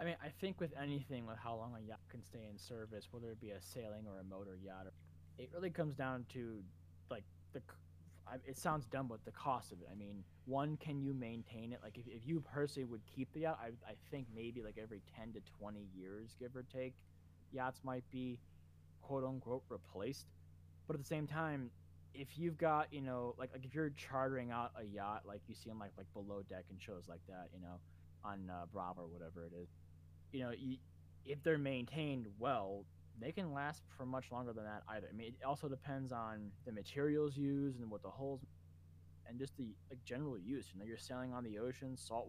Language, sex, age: English, male, 20-39